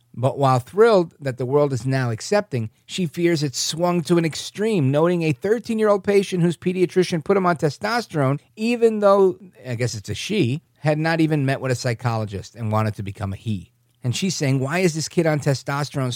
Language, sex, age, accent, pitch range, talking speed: English, male, 40-59, American, 130-195 Hz, 205 wpm